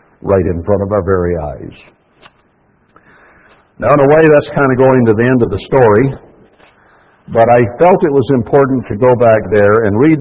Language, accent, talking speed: English, American, 195 wpm